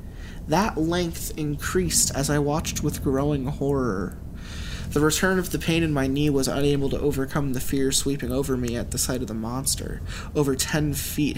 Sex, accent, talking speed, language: male, American, 185 wpm, English